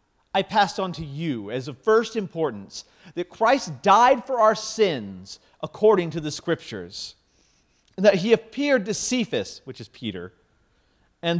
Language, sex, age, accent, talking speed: English, male, 40-59, American, 155 wpm